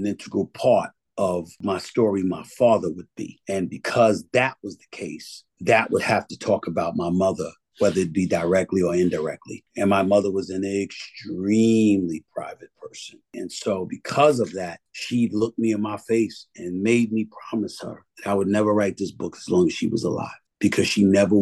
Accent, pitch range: American, 90-105 Hz